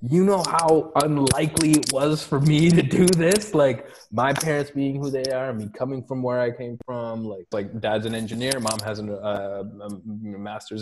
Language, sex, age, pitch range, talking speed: English, male, 20-39, 105-135 Hz, 205 wpm